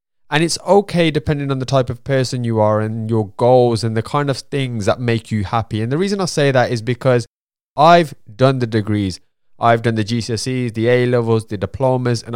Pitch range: 115-140 Hz